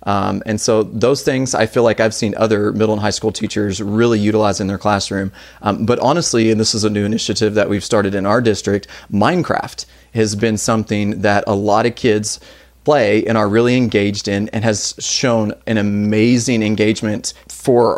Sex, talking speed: male, 195 wpm